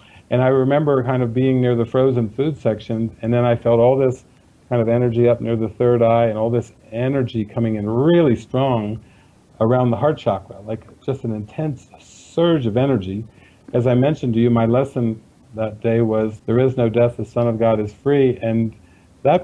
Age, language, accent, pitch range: 50-69, English, American, 110-130 Hz